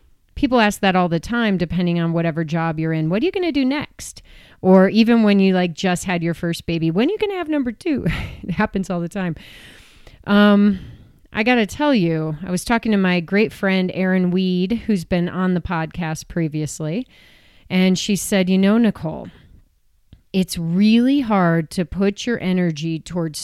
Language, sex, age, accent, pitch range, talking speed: English, female, 30-49, American, 165-205 Hz, 195 wpm